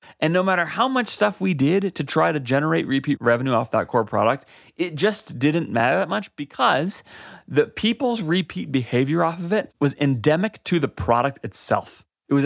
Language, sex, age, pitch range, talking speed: English, male, 30-49, 120-170 Hz, 195 wpm